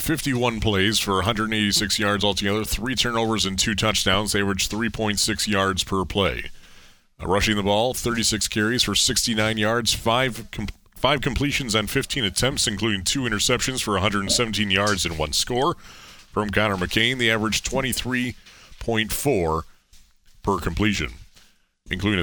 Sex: male